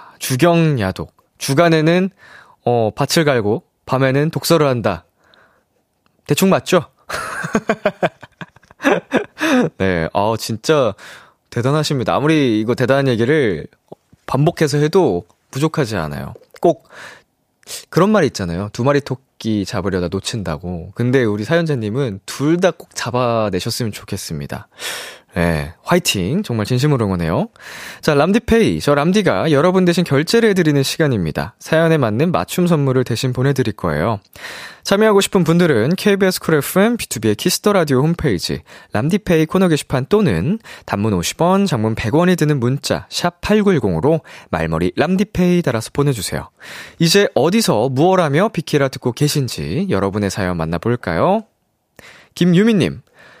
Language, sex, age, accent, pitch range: Korean, male, 20-39, native, 110-175 Hz